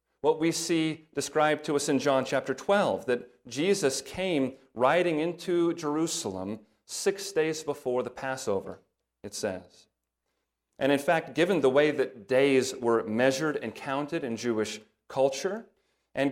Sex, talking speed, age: male, 145 wpm, 40-59